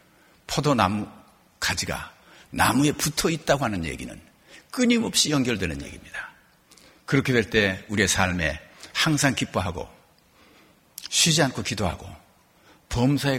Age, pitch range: 60-79, 85-125 Hz